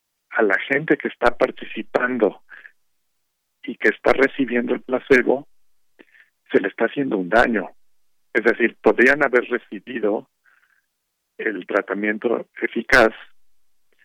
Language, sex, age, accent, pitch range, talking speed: Spanish, male, 50-69, Mexican, 110-145 Hz, 110 wpm